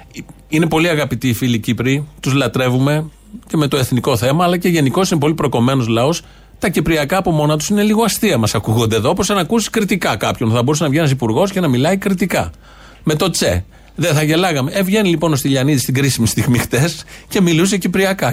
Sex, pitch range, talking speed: male, 120-175 Hz, 210 wpm